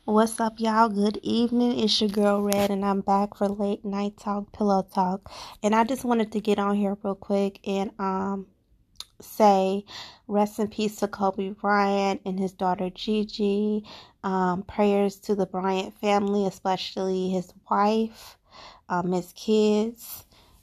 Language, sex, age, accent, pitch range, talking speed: English, female, 20-39, American, 185-210 Hz, 155 wpm